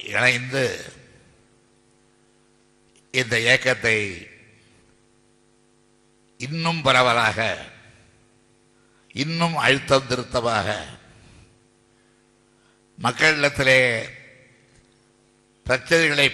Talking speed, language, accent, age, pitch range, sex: 35 wpm, Tamil, native, 60-79, 105-120 Hz, male